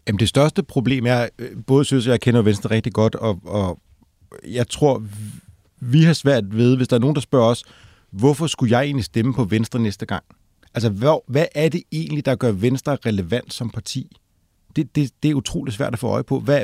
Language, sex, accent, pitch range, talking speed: Danish, male, native, 105-130 Hz, 215 wpm